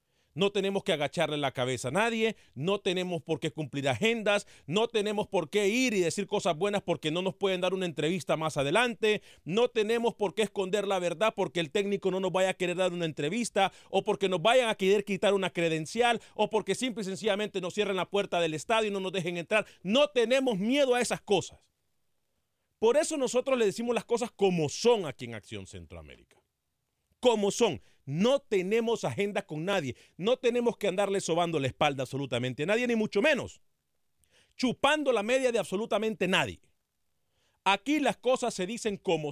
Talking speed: 190 wpm